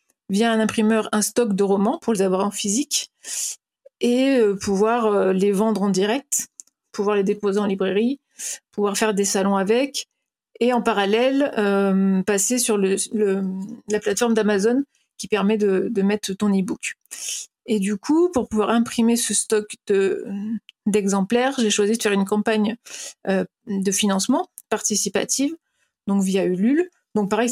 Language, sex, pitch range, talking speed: French, female, 200-240 Hz, 155 wpm